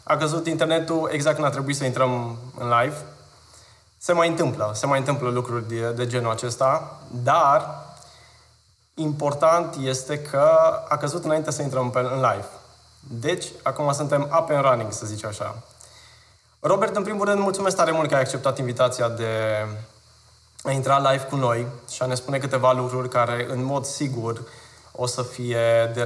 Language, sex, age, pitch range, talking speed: Romanian, male, 20-39, 120-155 Hz, 170 wpm